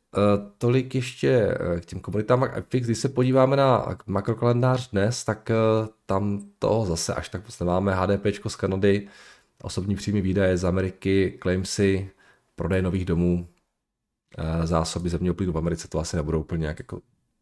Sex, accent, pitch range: male, native, 85-110 Hz